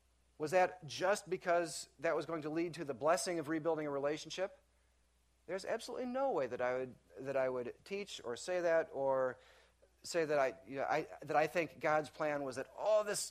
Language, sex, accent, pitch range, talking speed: English, male, American, 110-160 Hz, 210 wpm